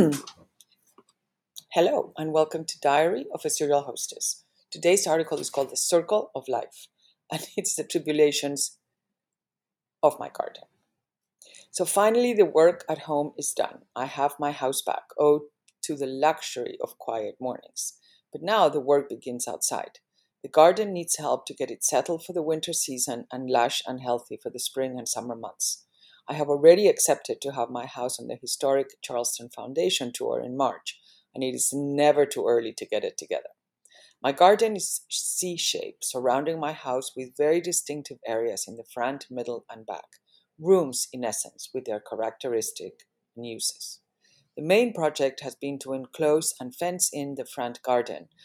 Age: 50-69